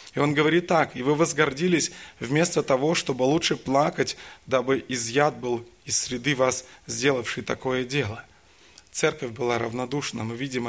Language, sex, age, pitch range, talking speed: Russian, male, 20-39, 120-145 Hz, 145 wpm